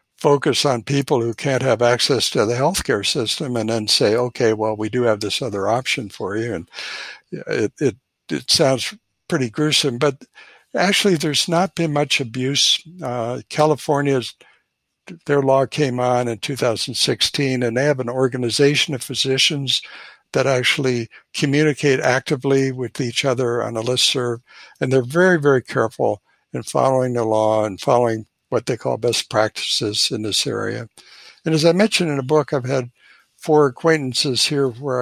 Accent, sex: American, male